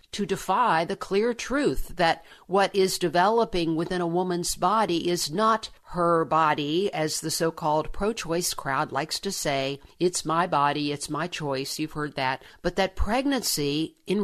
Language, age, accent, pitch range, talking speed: English, 50-69, American, 155-195 Hz, 160 wpm